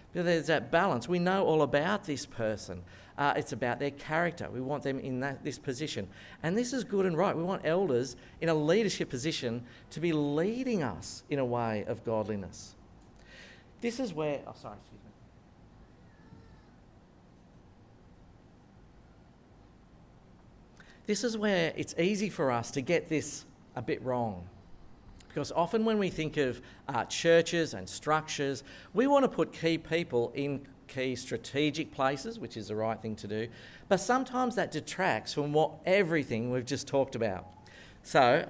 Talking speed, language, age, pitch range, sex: 160 wpm, English, 50-69, 115-165 Hz, male